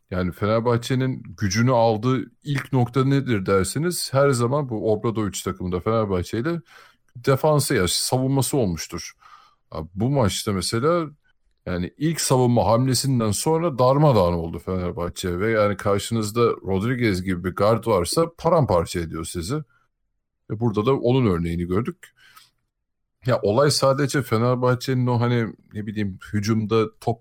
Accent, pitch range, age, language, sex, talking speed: native, 100-130 Hz, 50-69, Turkish, male, 125 wpm